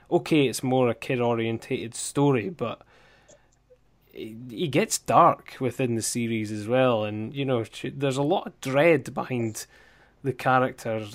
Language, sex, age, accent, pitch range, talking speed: English, male, 10-29, British, 120-145 Hz, 140 wpm